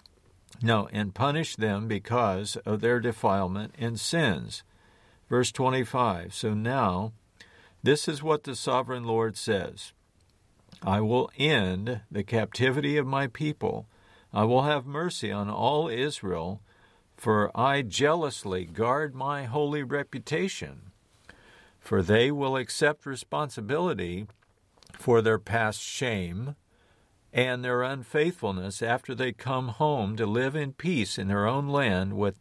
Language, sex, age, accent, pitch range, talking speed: English, male, 50-69, American, 100-135 Hz, 125 wpm